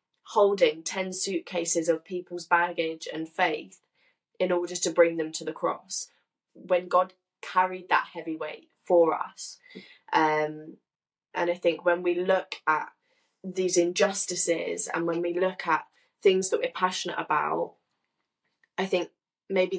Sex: female